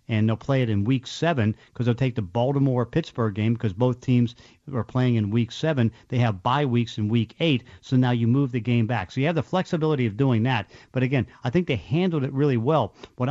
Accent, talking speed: American, 240 wpm